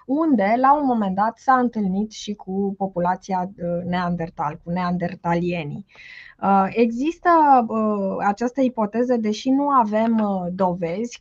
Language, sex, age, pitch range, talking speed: Romanian, female, 20-39, 185-240 Hz, 105 wpm